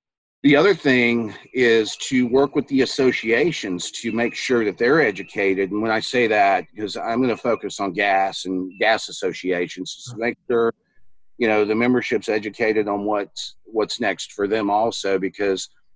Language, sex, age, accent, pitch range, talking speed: English, male, 50-69, American, 100-130 Hz, 175 wpm